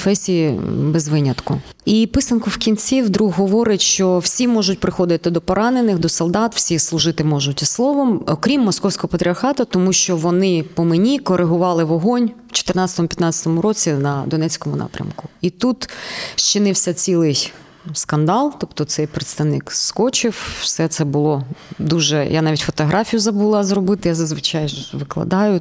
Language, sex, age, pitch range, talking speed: Ukrainian, female, 20-39, 155-195 Hz, 135 wpm